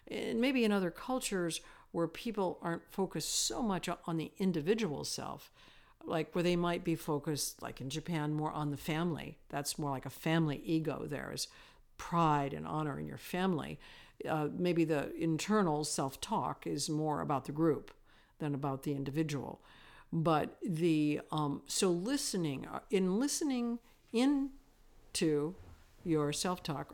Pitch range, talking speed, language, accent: 150-195 Hz, 145 wpm, English, American